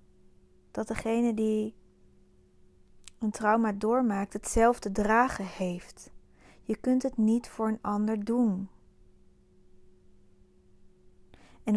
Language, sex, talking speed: Dutch, female, 90 wpm